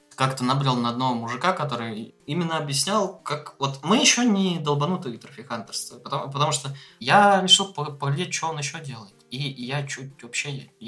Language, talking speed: Russian, 175 wpm